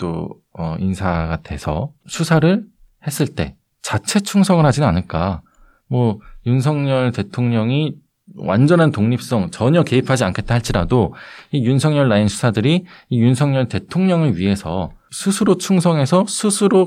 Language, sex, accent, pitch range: Korean, male, native, 100-150 Hz